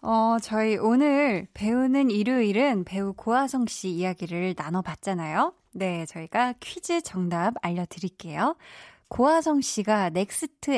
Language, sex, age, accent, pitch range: Korean, female, 20-39, native, 185-270 Hz